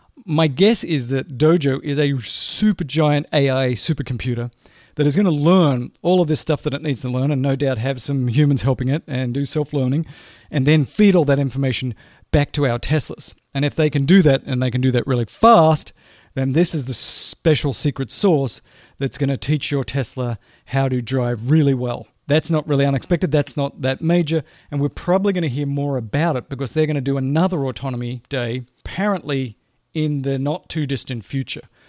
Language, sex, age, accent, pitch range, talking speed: English, male, 40-59, Australian, 130-155 Hz, 200 wpm